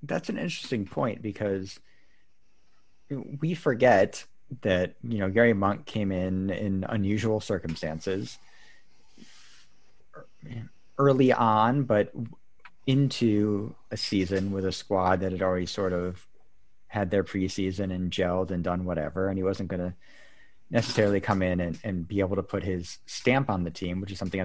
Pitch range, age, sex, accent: 95-120 Hz, 30-49, male, American